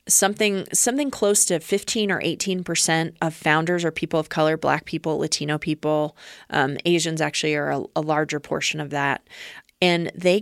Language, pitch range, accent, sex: English, 165-210 Hz, American, female